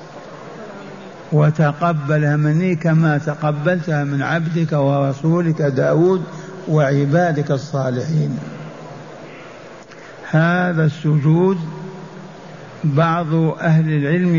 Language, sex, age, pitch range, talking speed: Arabic, male, 60-79, 150-175 Hz, 65 wpm